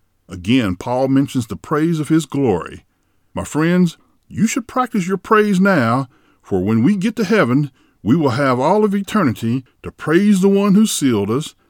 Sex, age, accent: male, 50-69, American